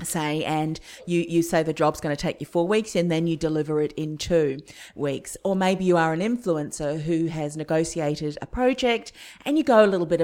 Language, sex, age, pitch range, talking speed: English, female, 40-59, 160-215 Hz, 225 wpm